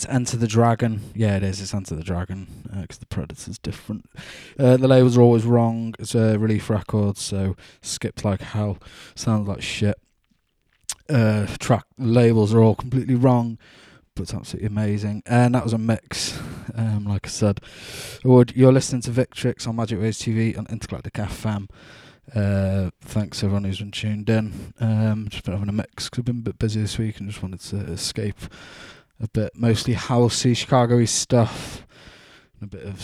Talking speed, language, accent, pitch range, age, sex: 180 wpm, English, British, 100-120 Hz, 20-39, male